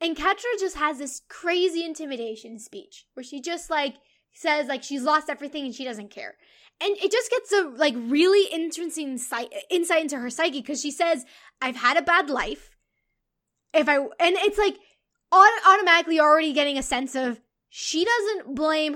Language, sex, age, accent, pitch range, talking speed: English, female, 10-29, American, 270-360 Hz, 175 wpm